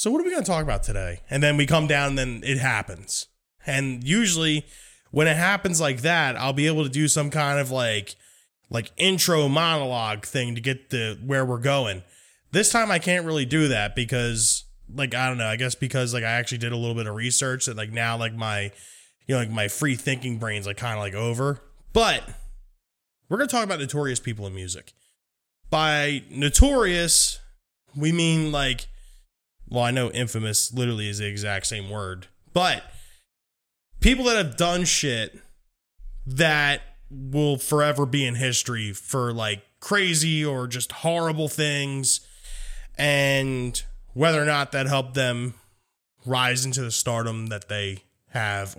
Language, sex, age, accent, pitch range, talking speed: English, male, 20-39, American, 115-150 Hz, 175 wpm